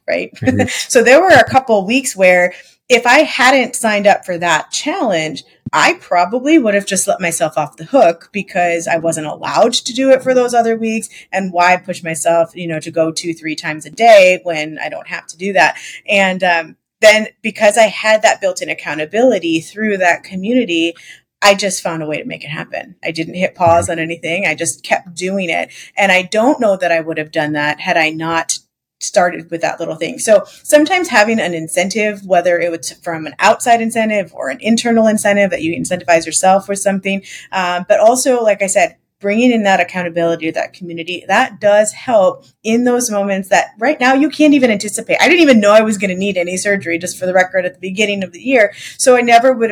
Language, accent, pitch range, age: English, American, 170-225 Hz, 30-49